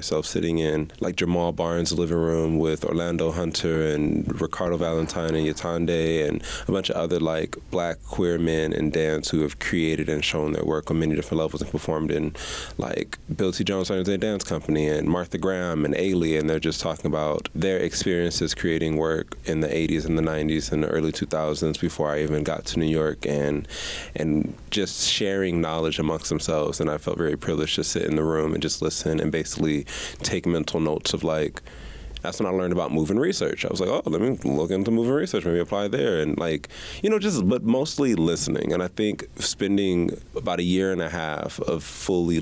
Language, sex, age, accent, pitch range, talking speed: English, male, 20-39, American, 75-85 Hz, 210 wpm